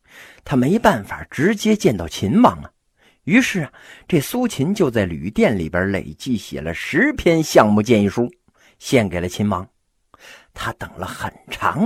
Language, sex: Chinese, male